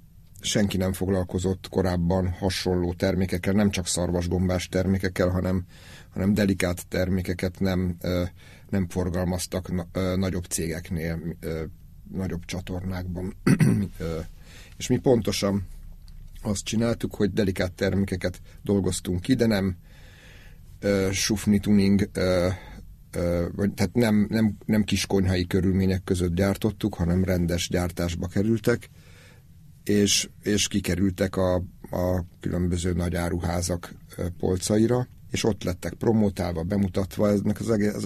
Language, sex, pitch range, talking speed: Hungarian, male, 90-100 Hz, 115 wpm